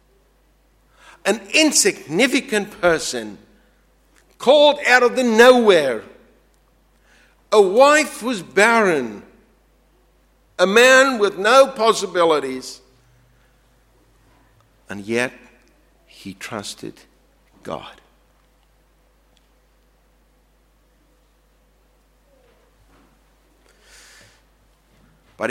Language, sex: English, male